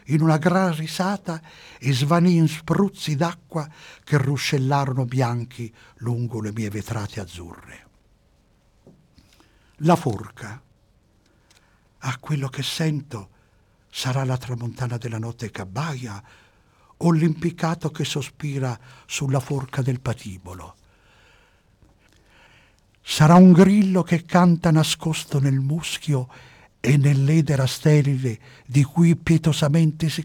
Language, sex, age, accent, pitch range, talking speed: Italian, male, 60-79, native, 120-160 Hz, 105 wpm